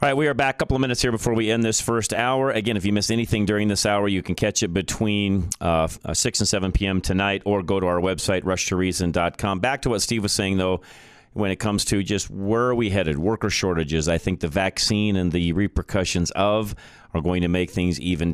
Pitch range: 90-110 Hz